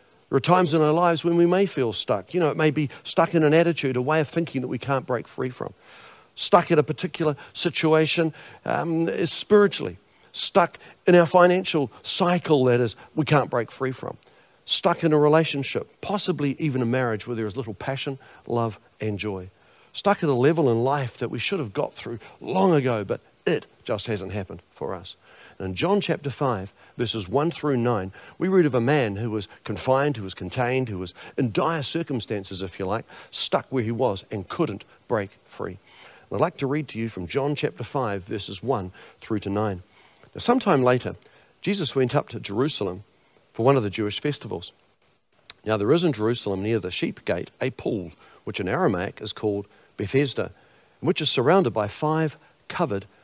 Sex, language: male, English